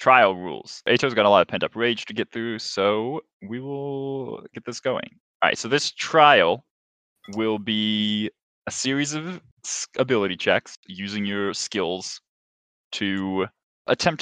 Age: 20-39